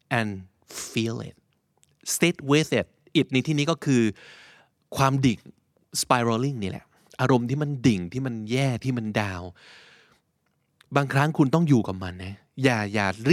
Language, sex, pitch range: Thai, male, 100-140 Hz